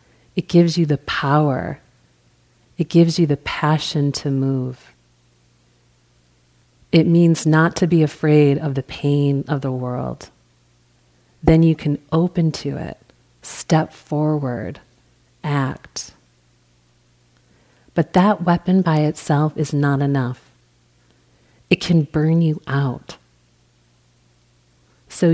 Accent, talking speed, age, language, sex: American, 110 wpm, 40-59, English, female